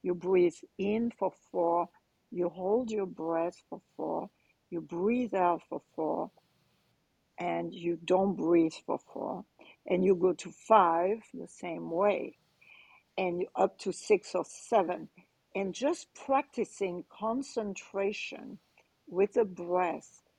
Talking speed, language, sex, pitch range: 125 wpm, English, female, 175-230 Hz